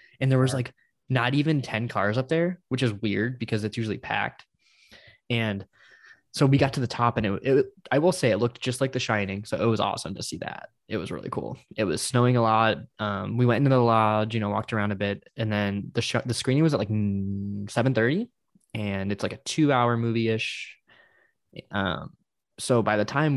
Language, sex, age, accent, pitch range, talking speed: English, male, 20-39, American, 105-130 Hz, 215 wpm